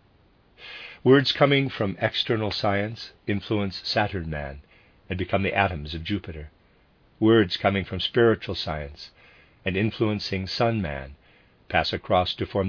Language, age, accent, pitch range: English, 50-69, American, 90-110 Hz